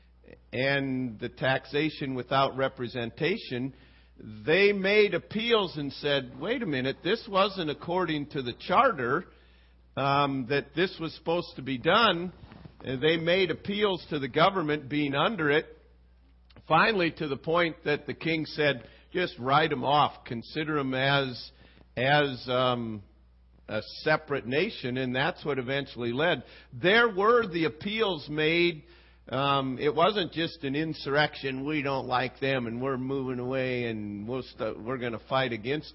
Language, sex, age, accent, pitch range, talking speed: English, male, 50-69, American, 115-155 Hz, 145 wpm